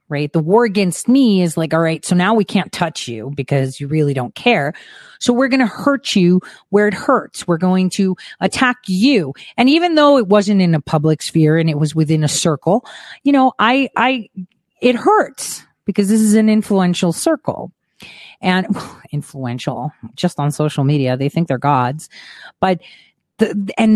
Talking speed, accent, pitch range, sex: 185 wpm, American, 160-230 Hz, female